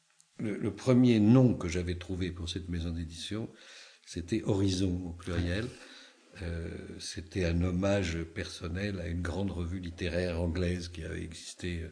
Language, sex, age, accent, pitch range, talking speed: French, male, 60-79, French, 85-105 Hz, 145 wpm